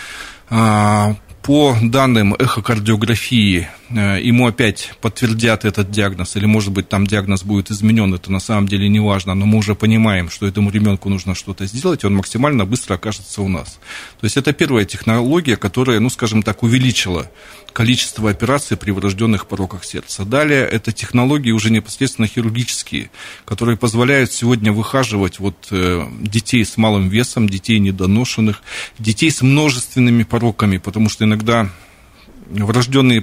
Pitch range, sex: 100-125 Hz, male